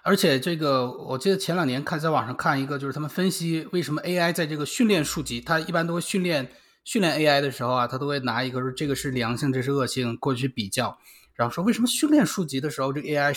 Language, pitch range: Chinese, 135-185 Hz